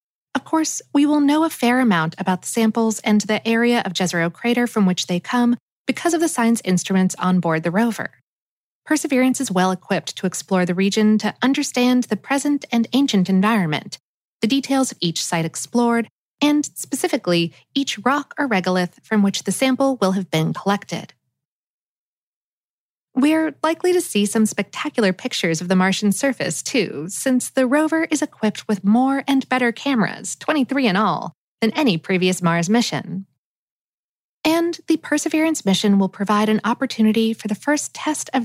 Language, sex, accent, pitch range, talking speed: English, female, American, 185-275 Hz, 165 wpm